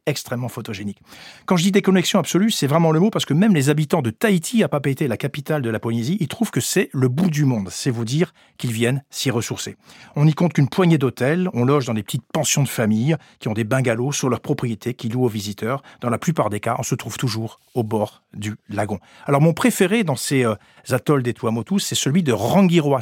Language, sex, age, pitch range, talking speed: French, male, 40-59, 115-155 Hz, 235 wpm